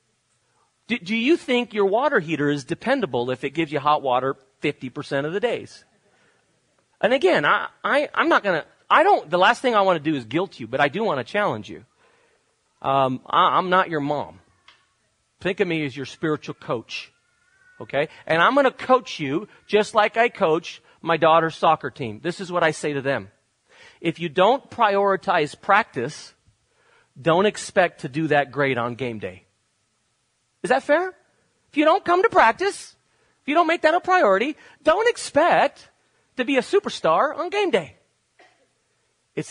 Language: English